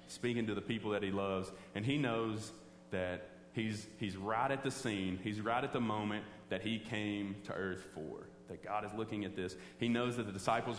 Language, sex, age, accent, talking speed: English, male, 30-49, American, 215 wpm